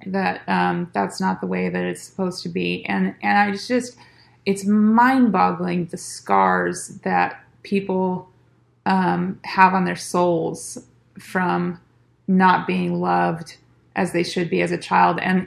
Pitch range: 175-190 Hz